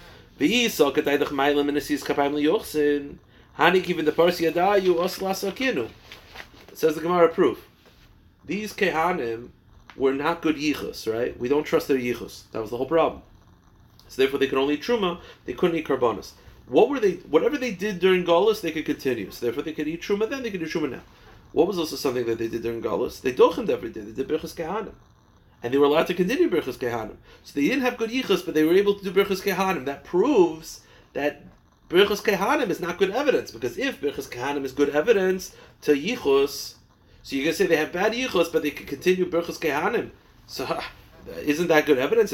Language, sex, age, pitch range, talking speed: English, male, 30-49, 145-195 Hz, 190 wpm